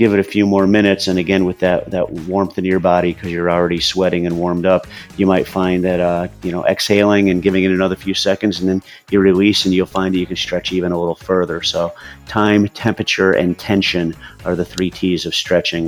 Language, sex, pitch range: English, male, 85-100 Hz